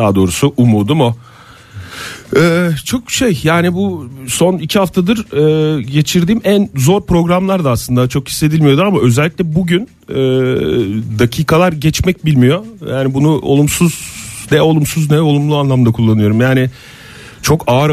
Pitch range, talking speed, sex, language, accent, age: 115-155 Hz, 135 wpm, male, Turkish, native, 40-59